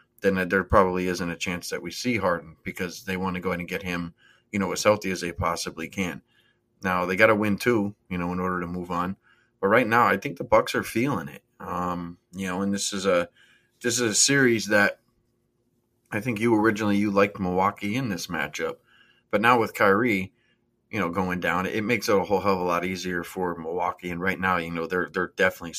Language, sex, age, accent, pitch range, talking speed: English, male, 30-49, American, 90-105 Hz, 235 wpm